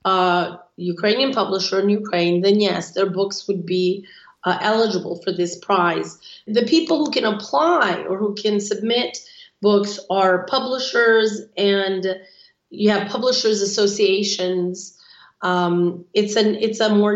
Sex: female